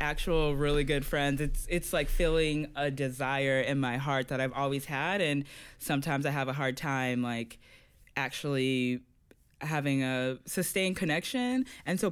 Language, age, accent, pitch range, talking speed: English, 20-39, American, 130-170 Hz, 160 wpm